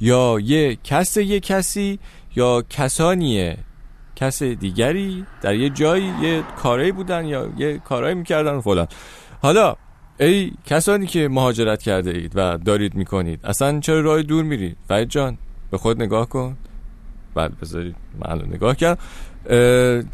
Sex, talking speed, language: male, 140 wpm, Persian